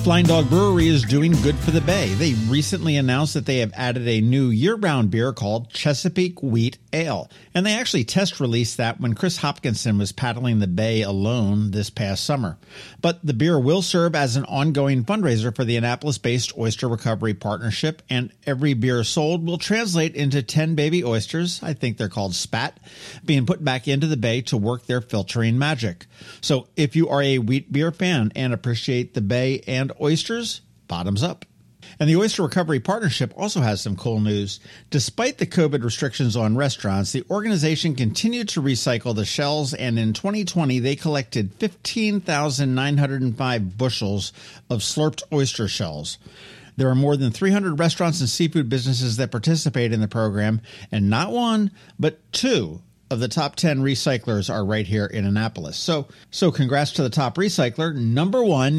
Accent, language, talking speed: American, English, 175 wpm